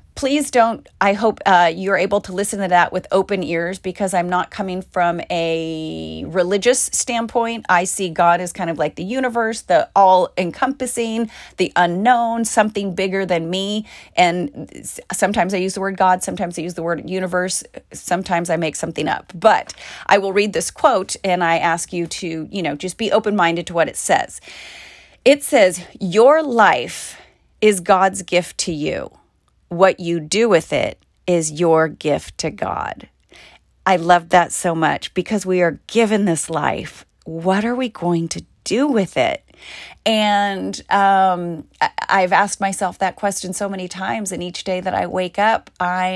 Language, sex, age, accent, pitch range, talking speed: English, female, 30-49, American, 175-210 Hz, 175 wpm